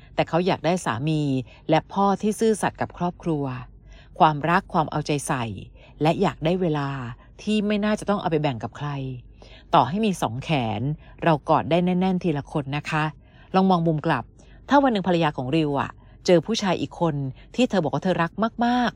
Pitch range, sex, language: 135-180 Hz, female, Thai